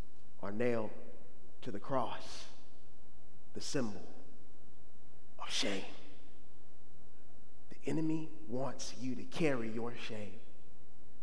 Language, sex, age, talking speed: English, male, 30-49, 90 wpm